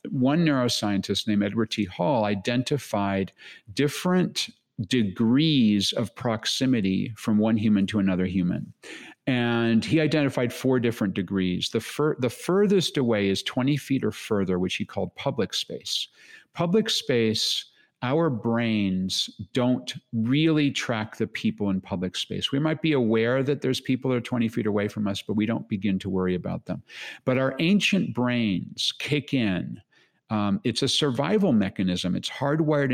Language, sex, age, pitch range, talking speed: English, male, 50-69, 105-145 Hz, 155 wpm